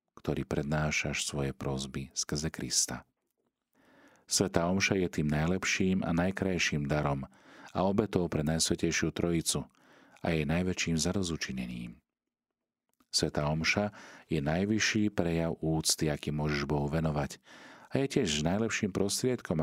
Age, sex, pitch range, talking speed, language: 40-59, male, 75-95 Hz, 115 wpm, Slovak